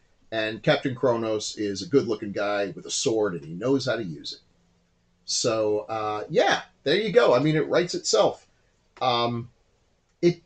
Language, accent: English, American